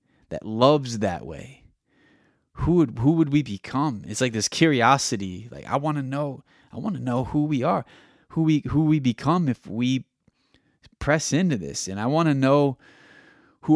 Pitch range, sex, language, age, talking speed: 110-150 Hz, male, English, 30-49, 185 wpm